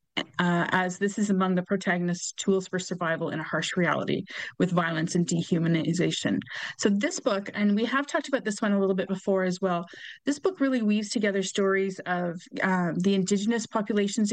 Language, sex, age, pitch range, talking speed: English, female, 30-49, 180-210 Hz, 190 wpm